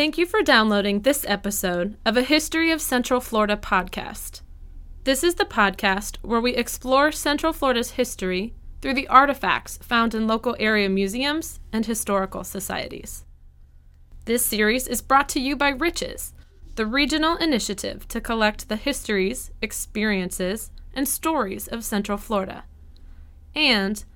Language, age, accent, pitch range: English, 20-39, American, 185-265 Hz